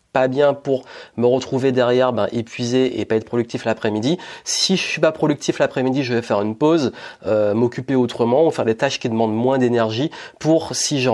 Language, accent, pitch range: French, French, 115-135 Hz